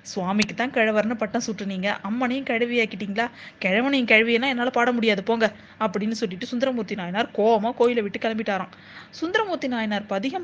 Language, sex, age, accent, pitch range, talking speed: Tamil, female, 20-39, native, 210-260 Hz, 140 wpm